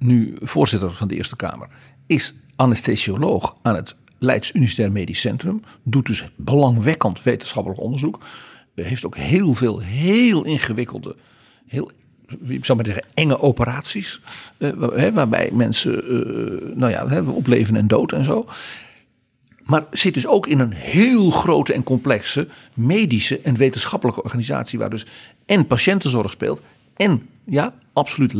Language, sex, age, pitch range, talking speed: Dutch, male, 50-69, 115-155 Hz, 135 wpm